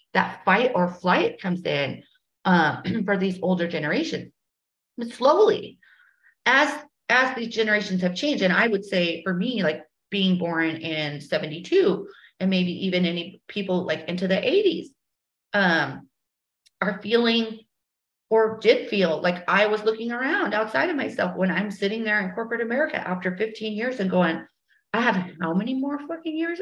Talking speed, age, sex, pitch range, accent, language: 160 wpm, 30-49, female, 180-240 Hz, American, English